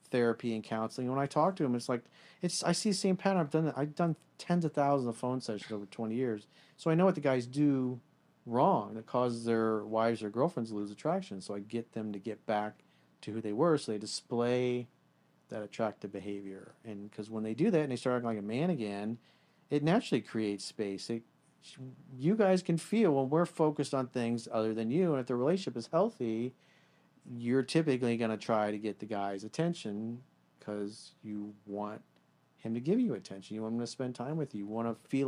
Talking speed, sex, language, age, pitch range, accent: 225 wpm, male, English, 40-59, 110-155 Hz, American